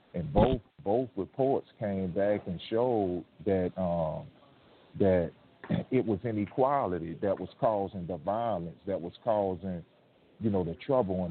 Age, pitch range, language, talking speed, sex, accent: 40-59, 90-105 Hz, English, 145 wpm, male, American